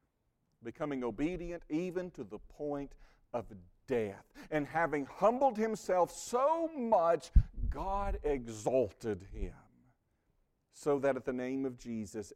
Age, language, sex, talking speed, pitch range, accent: 50-69, English, male, 115 wpm, 105-165 Hz, American